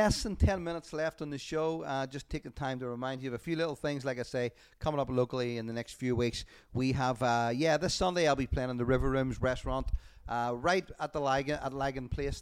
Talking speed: 255 wpm